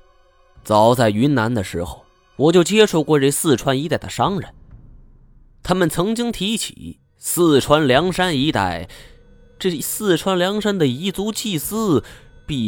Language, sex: Chinese, male